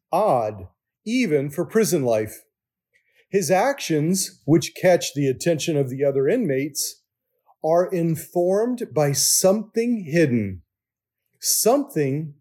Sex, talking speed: male, 100 wpm